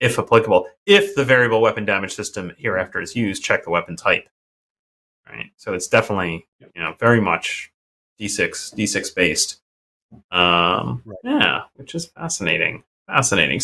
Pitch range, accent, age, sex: 105-170 Hz, American, 30-49, male